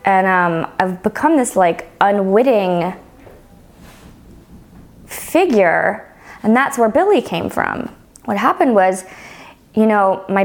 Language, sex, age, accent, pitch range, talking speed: English, female, 20-39, American, 185-235 Hz, 115 wpm